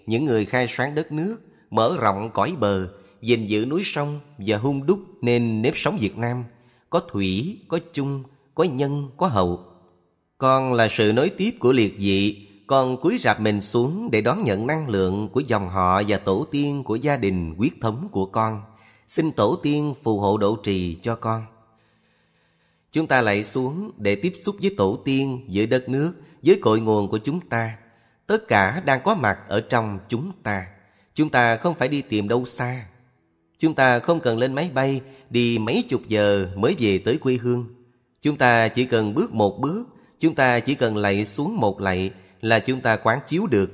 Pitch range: 105-140 Hz